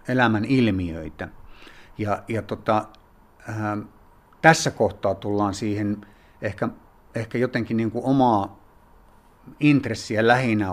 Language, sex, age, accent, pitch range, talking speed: Finnish, male, 60-79, native, 100-115 Hz, 95 wpm